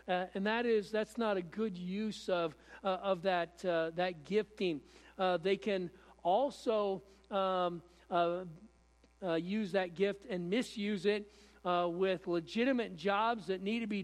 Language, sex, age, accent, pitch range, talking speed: English, male, 50-69, American, 175-210 Hz, 165 wpm